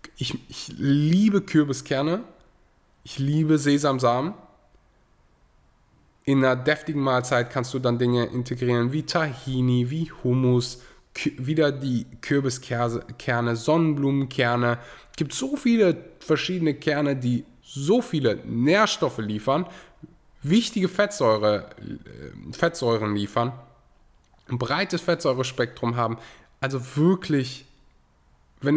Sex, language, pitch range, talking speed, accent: male, German, 115-155 Hz, 95 wpm, German